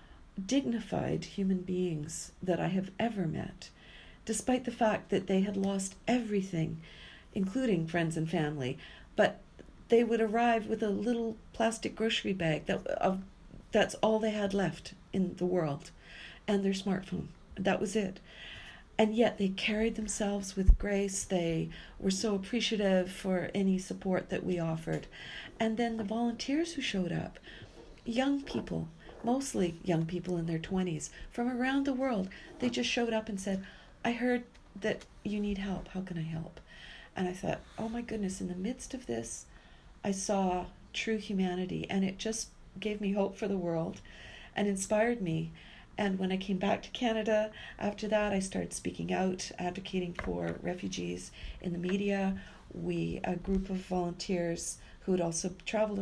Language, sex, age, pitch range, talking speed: English, female, 50-69, 180-220 Hz, 165 wpm